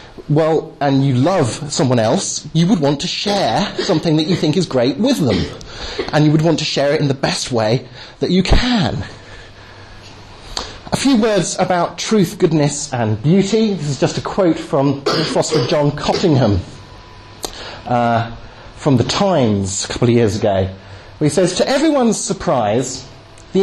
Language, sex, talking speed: English, male, 165 wpm